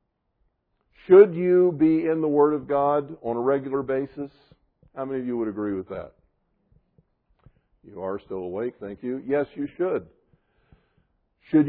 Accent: American